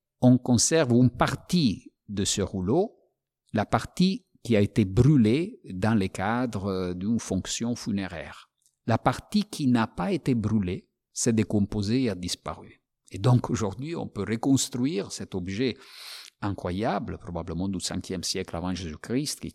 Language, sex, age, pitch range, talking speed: French, male, 50-69, 85-110 Hz, 145 wpm